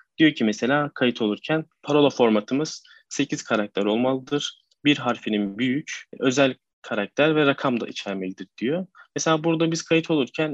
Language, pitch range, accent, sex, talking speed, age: Turkish, 120-160 Hz, native, male, 140 wpm, 30-49